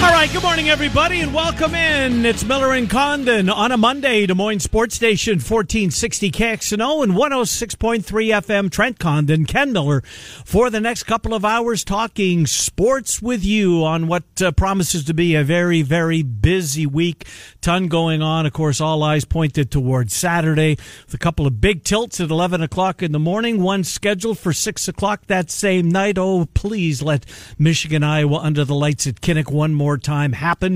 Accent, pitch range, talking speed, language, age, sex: American, 150-210 Hz, 180 wpm, English, 50-69, male